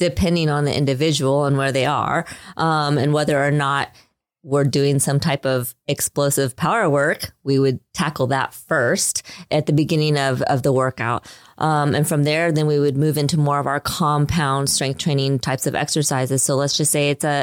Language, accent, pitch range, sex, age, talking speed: English, American, 140-160 Hz, female, 20-39, 195 wpm